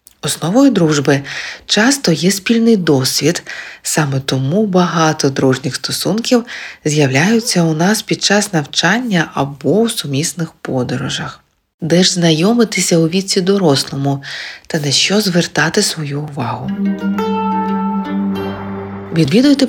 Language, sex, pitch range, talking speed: Ukrainian, female, 140-195 Hz, 105 wpm